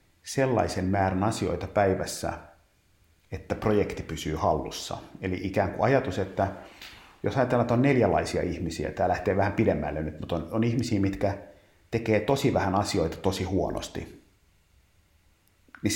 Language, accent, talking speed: Finnish, native, 135 wpm